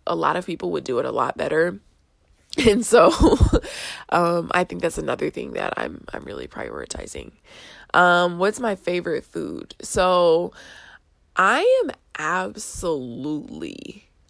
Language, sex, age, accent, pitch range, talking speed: English, female, 20-39, American, 170-205 Hz, 135 wpm